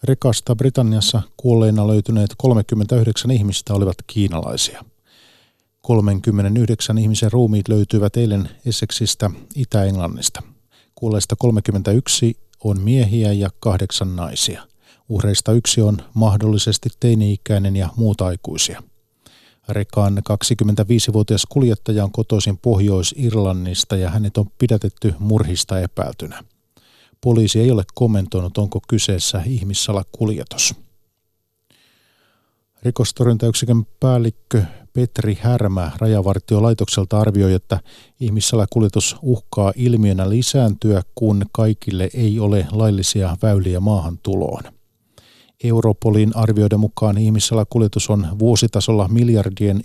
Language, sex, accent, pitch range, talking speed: Finnish, male, native, 100-115 Hz, 90 wpm